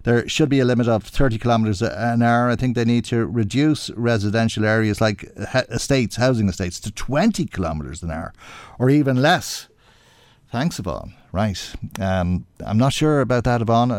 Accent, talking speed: Irish, 170 wpm